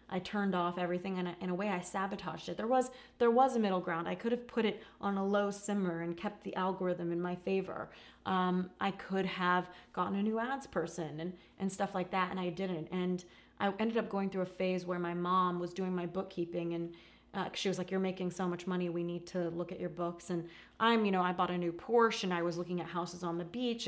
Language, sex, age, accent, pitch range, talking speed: English, female, 30-49, American, 180-205 Hz, 255 wpm